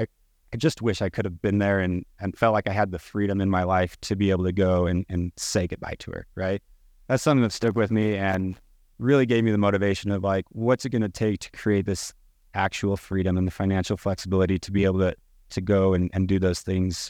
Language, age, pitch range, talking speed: English, 30-49, 95-110 Hz, 240 wpm